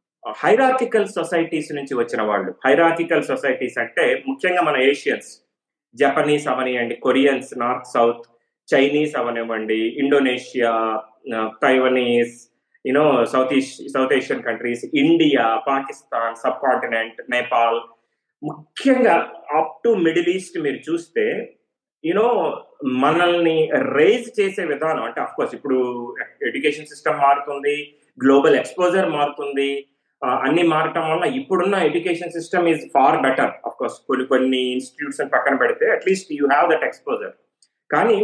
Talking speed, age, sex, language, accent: 115 wpm, 30-49, male, Telugu, native